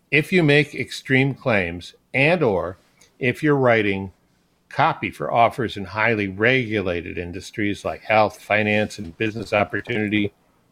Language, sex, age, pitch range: English, male, 60-79, 100-130 Hz